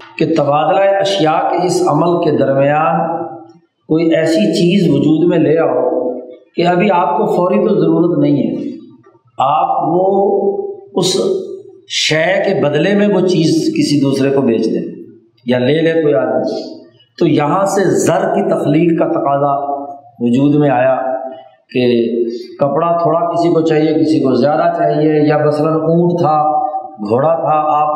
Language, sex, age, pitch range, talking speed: Urdu, male, 50-69, 145-180 Hz, 150 wpm